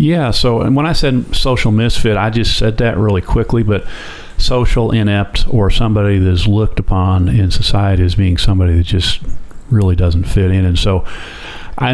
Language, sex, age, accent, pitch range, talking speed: English, male, 40-59, American, 95-115 Hz, 180 wpm